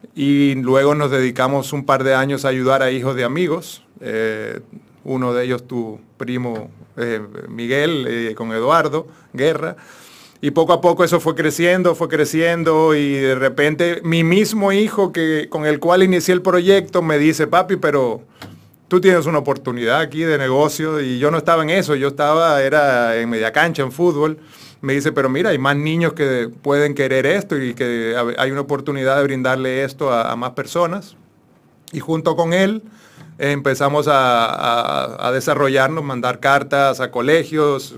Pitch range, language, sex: 125-160 Hz, Spanish, male